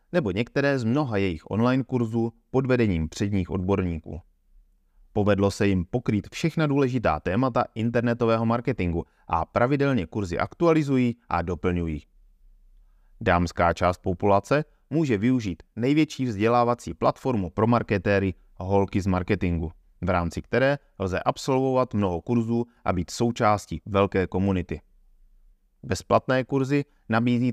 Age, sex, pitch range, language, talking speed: 30-49, male, 90-120 Hz, Czech, 120 wpm